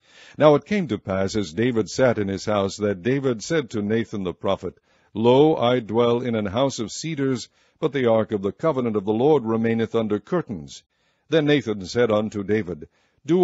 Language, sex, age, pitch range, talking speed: English, male, 60-79, 105-130 Hz, 195 wpm